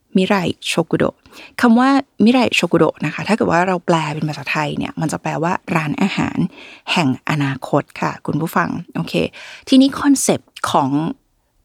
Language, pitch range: Thai, 165-220 Hz